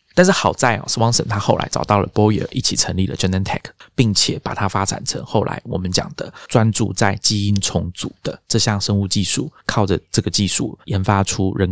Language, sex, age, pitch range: Chinese, male, 20-39, 95-115 Hz